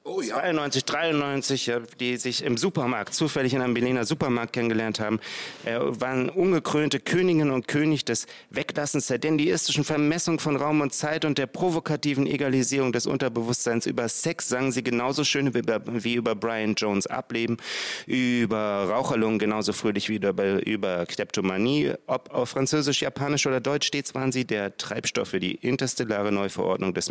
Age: 30-49